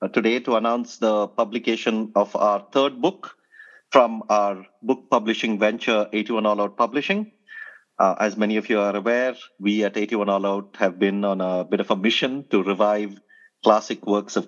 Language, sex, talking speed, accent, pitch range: English, male, 180 wpm, Indian, 105-140 Hz